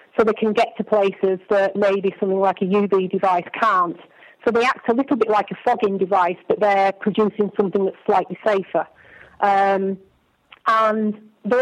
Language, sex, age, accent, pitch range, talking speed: English, female, 40-59, British, 190-215 Hz, 175 wpm